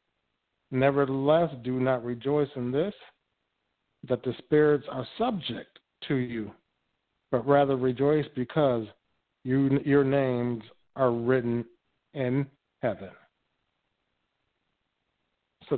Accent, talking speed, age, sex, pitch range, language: American, 90 wpm, 50-69, male, 125-145 Hz, English